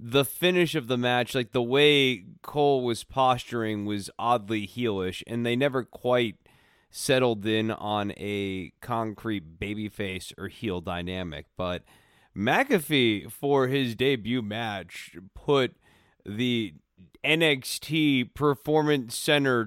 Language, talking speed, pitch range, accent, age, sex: English, 120 wpm, 105-145 Hz, American, 30-49, male